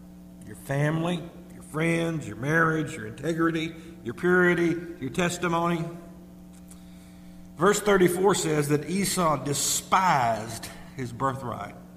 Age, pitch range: 50-69, 120-175 Hz